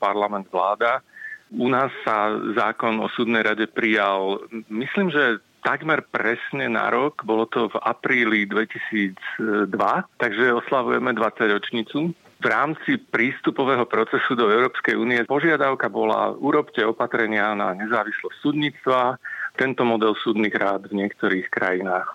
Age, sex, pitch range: 40-59, male, 105-135 Hz